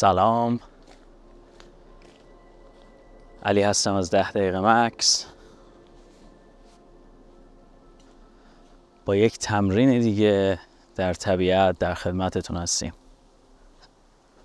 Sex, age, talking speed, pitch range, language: male, 30-49, 65 wpm, 90-105 Hz, Persian